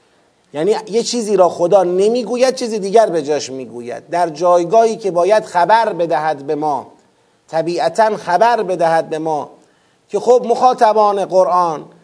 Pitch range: 180-245 Hz